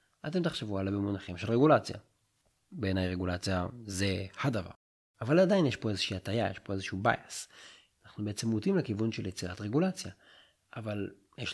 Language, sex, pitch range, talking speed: Hebrew, male, 95-125 Hz, 150 wpm